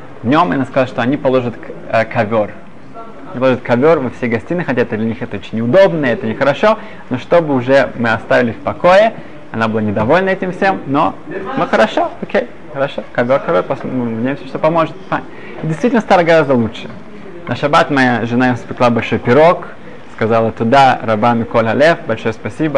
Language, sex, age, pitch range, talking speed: Russian, male, 20-39, 120-175 Hz, 180 wpm